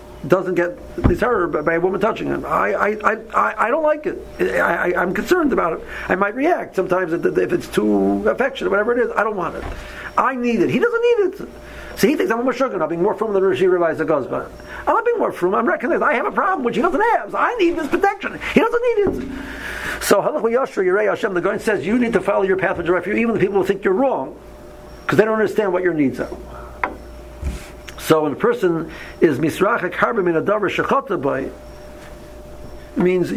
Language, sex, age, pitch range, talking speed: English, male, 50-69, 175-255 Hz, 210 wpm